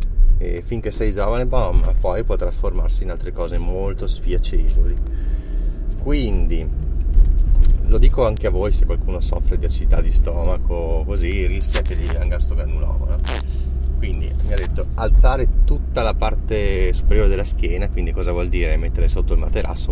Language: Italian